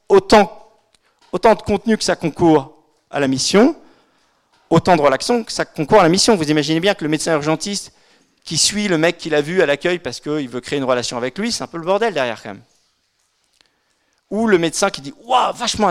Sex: male